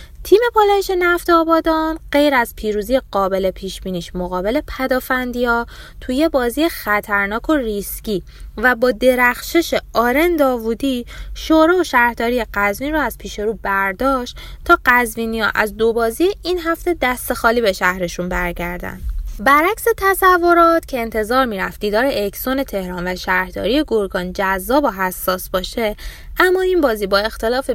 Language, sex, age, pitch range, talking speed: Persian, female, 20-39, 205-300 Hz, 135 wpm